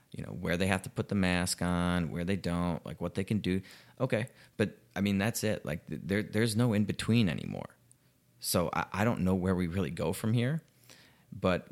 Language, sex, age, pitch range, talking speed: English, male, 30-49, 90-105 Hz, 220 wpm